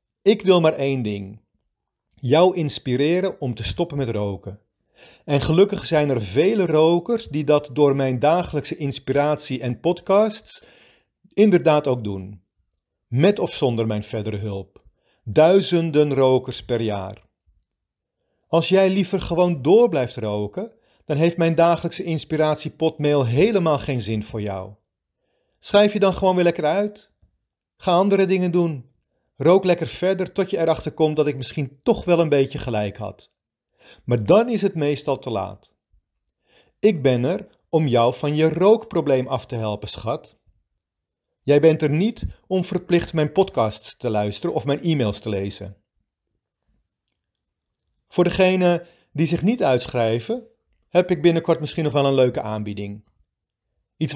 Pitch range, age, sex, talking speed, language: 110-175 Hz, 40-59, male, 145 wpm, Dutch